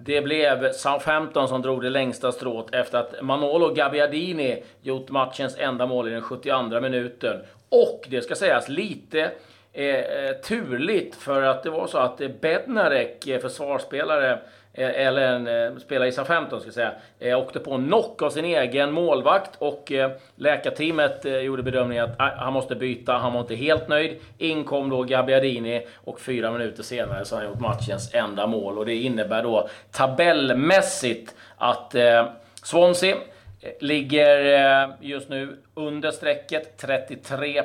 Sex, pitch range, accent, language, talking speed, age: male, 120-145 Hz, native, Swedish, 150 wpm, 30-49